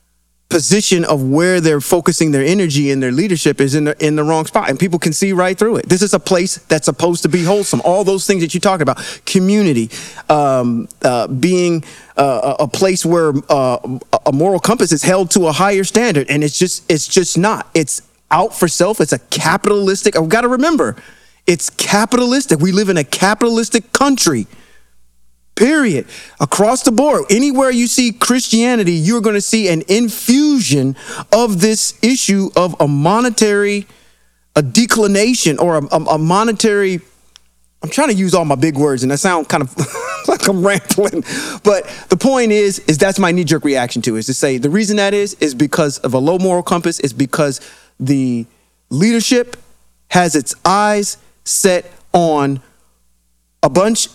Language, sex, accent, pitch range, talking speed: English, male, American, 145-205 Hz, 180 wpm